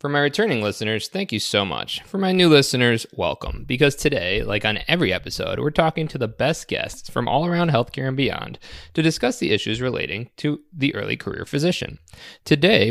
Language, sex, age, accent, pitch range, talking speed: English, male, 20-39, American, 105-145 Hz, 195 wpm